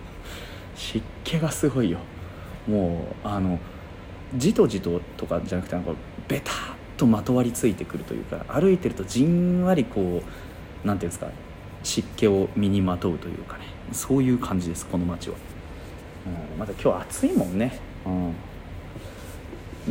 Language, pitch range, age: Japanese, 85-105 Hz, 40-59